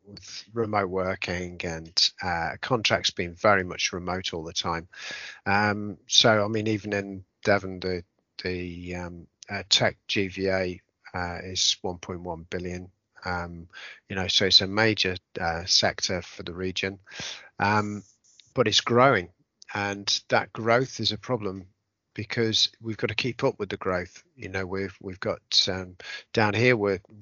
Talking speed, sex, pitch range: 160 wpm, male, 95-110 Hz